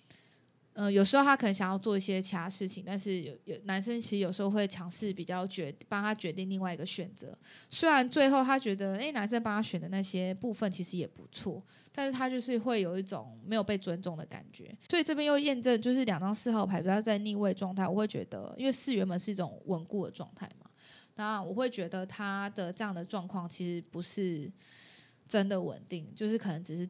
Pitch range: 185-230 Hz